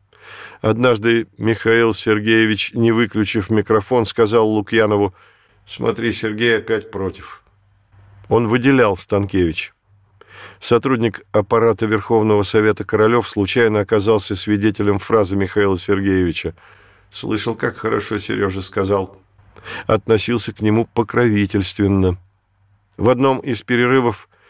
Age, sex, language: 50-69, male, Russian